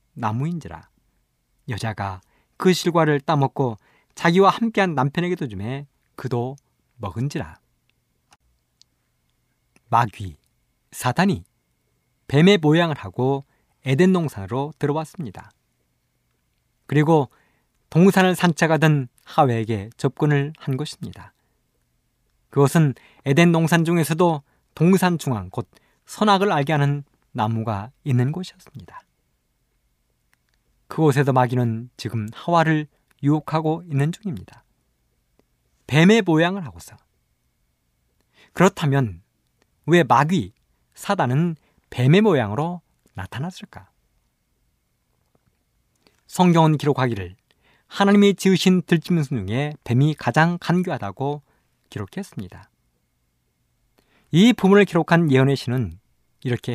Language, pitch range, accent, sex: Korean, 110-165 Hz, native, male